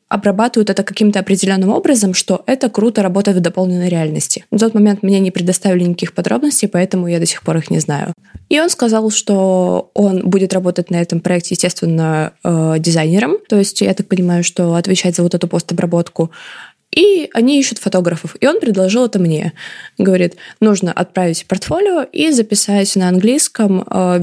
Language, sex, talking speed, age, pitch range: Russian, female, 170 wpm, 20-39, 175-210 Hz